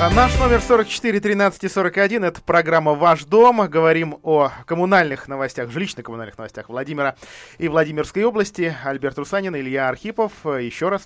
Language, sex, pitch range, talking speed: Russian, male, 110-165 Hz, 135 wpm